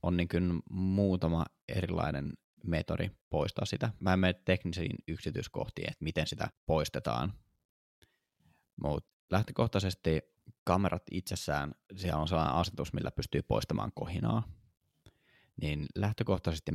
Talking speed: 110 wpm